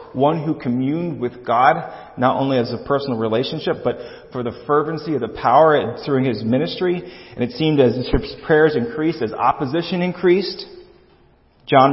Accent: American